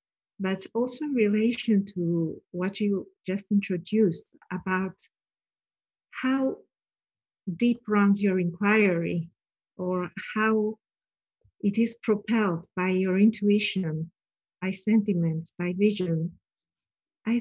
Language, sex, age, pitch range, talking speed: English, female, 50-69, 185-215 Hz, 95 wpm